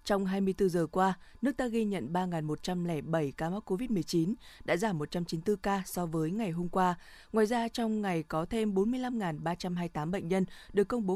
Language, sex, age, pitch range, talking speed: Vietnamese, female, 20-39, 165-210 Hz, 175 wpm